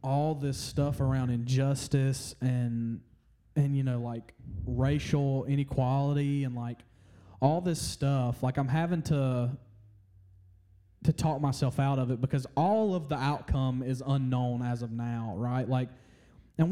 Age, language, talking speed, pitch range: 20-39, English, 145 wpm, 125-145 Hz